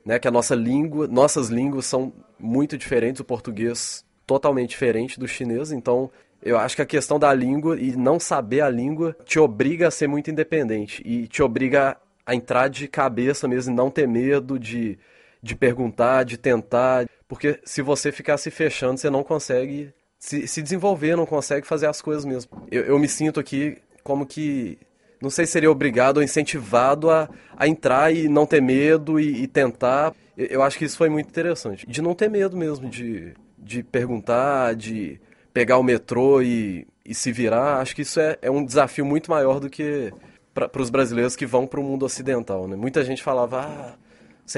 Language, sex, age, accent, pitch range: Chinese, male, 20-39, Brazilian, 125-150 Hz